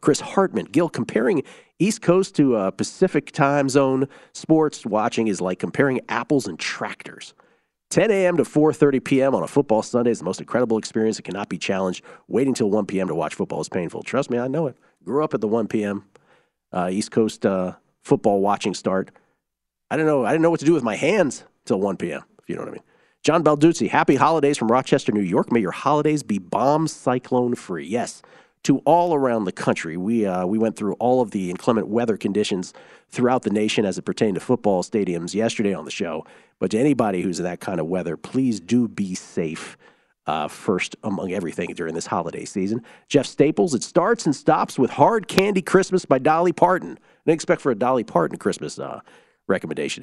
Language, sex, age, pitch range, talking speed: English, male, 40-59, 110-160 Hz, 205 wpm